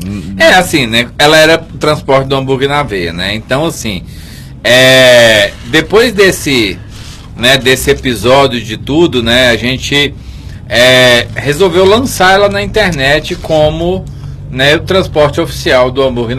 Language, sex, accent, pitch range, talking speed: Portuguese, male, Brazilian, 130-180 Hz, 140 wpm